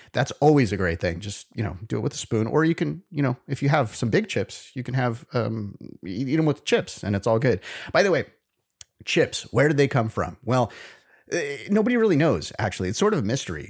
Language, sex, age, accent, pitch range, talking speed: English, male, 30-49, American, 100-140 Hz, 240 wpm